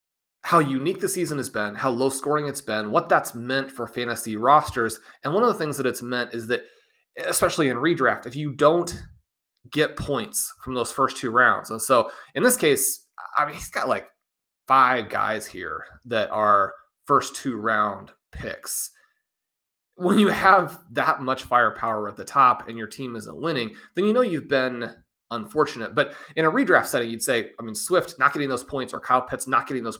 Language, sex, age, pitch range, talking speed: English, male, 30-49, 120-165 Hz, 195 wpm